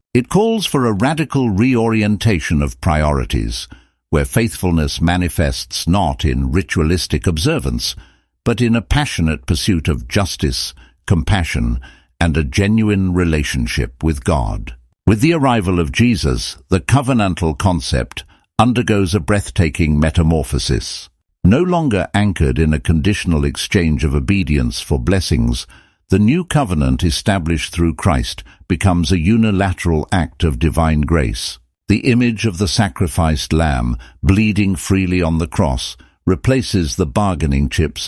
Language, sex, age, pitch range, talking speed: English, male, 60-79, 75-100 Hz, 125 wpm